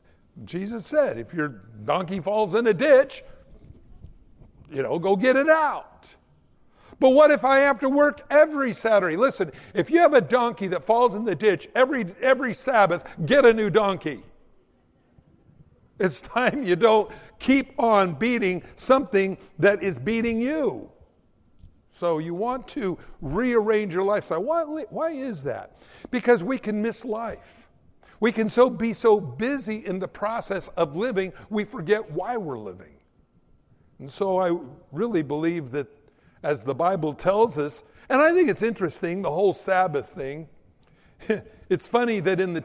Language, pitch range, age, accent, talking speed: English, 170-245 Hz, 60-79, American, 155 wpm